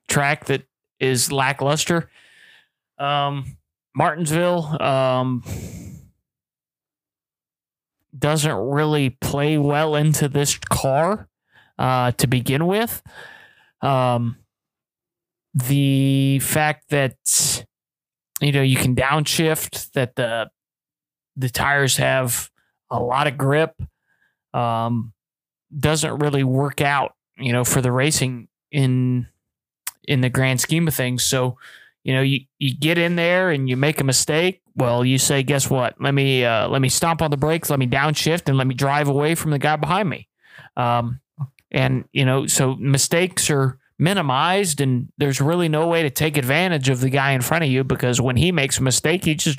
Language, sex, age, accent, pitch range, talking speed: English, male, 30-49, American, 130-155 Hz, 150 wpm